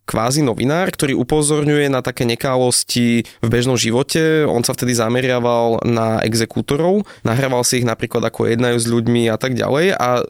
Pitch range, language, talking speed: 115-125 Hz, Slovak, 165 wpm